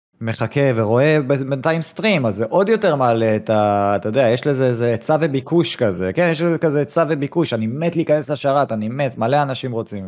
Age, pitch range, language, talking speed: 20-39, 105-145 Hz, Hebrew, 195 wpm